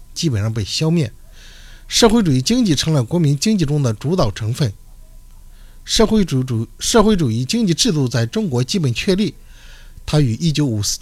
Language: Chinese